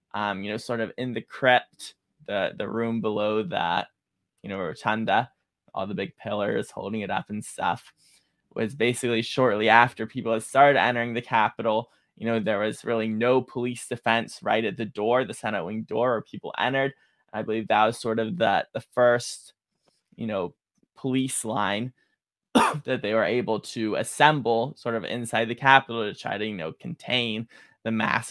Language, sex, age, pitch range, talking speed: English, male, 20-39, 110-120 Hz, 180 wpm